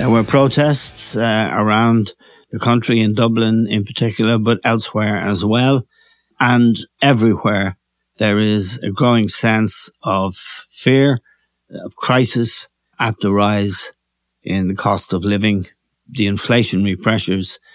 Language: English